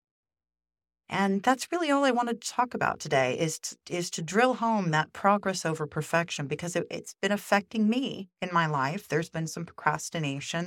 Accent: American